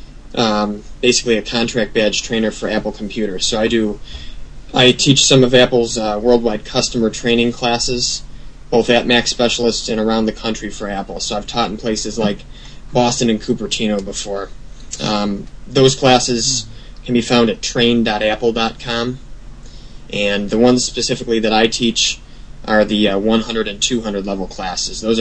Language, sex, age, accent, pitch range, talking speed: English, male, 20-39, American, 105-120 Hz, 155 wpm